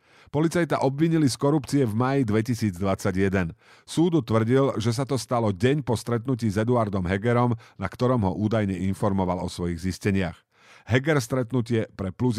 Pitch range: 110-150 Hz